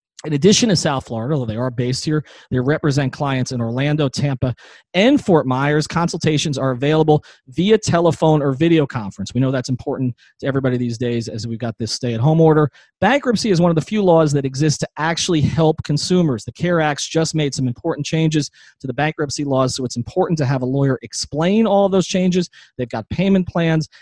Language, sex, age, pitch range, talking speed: English, male, 30-49, 125-160 Hz, 200 wpm